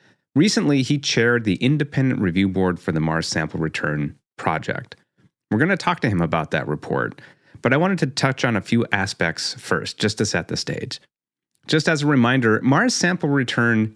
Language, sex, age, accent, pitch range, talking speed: English, male, 30-49, American, 95-140 Hz, 190 wpm